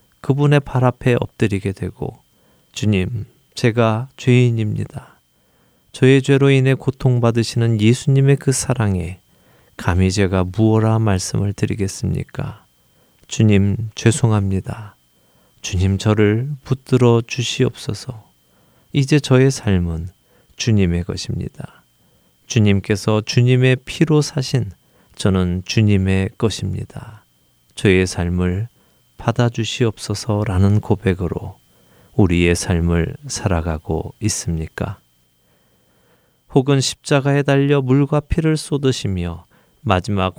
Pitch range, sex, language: 95-130 Hz, male, Korean